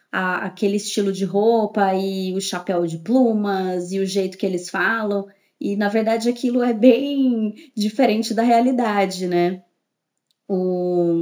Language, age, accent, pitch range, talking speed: Portuguese, 20-39, Brazilian, 195-230 Hz, 140 wpm